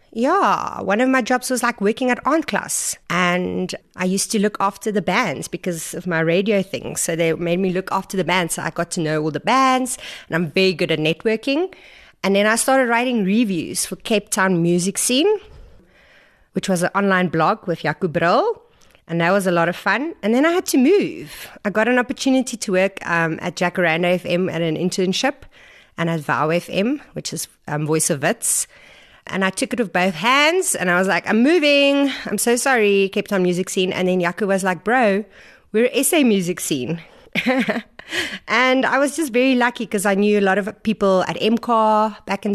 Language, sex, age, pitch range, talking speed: English, female, 30-49, 180-235 Hz, 210 wpm